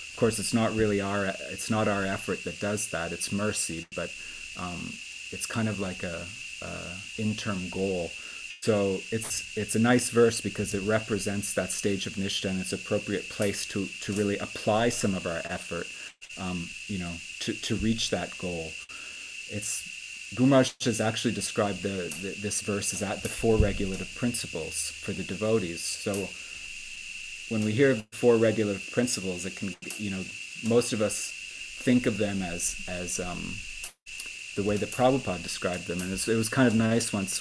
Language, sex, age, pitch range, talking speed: English, male, 30-49, 95-110 Hz, 180 wpm